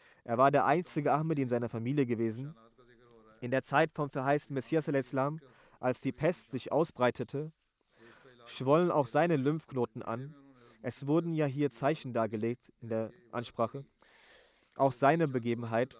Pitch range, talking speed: 120-145 Hz, 145 wpm